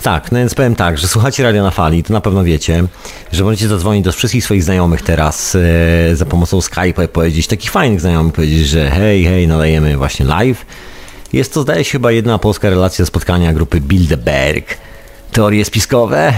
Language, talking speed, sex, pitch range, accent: Polish, 185 wpm, male, 85-105 Hz, native